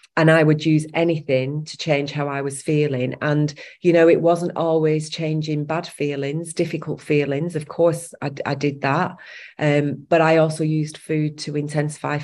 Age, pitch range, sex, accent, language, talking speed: 30-49, 145-160 Hz, female, British, English, 175 wpm